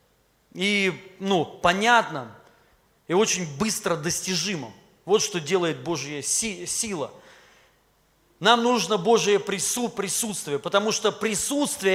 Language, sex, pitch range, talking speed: Russian, male, 155-215 Hz, 100 wpm